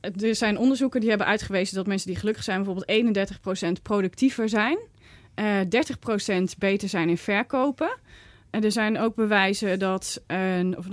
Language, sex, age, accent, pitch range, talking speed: Dutch, female, 20-39, Dutch, 195-255 Hz, 150 wpm